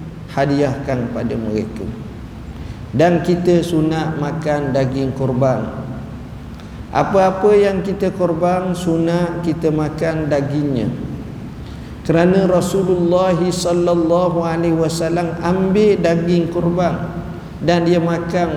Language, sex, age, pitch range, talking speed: Malay, male, 50-69, 140-170 Hz, 85 wpm